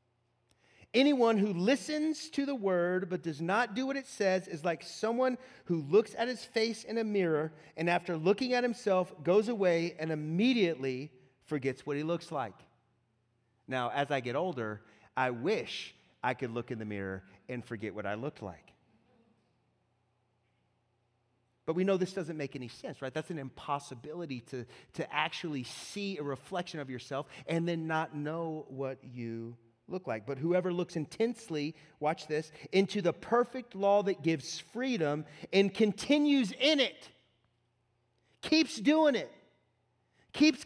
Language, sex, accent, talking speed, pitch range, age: English, male, American, 155 wpm, 130-200 Hz, 30-49